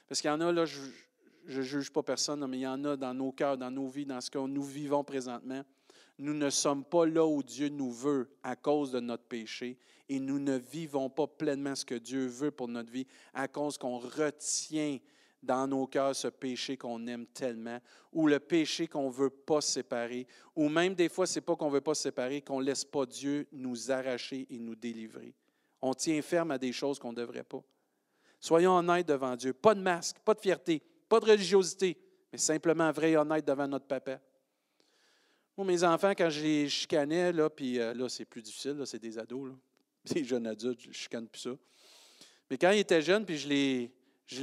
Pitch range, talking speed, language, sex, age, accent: 125-155 Hz, 220 wpm, French, male, 40-59, Canadian